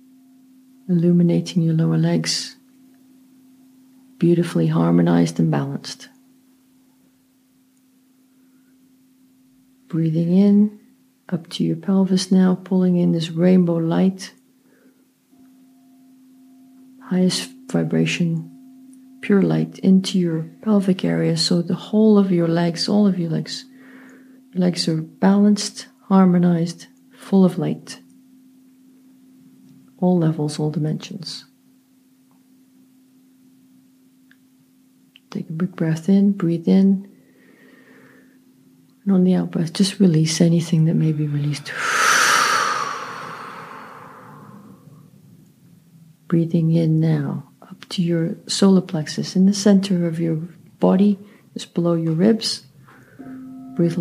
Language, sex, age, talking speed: English, female, 50-69, 100 wpm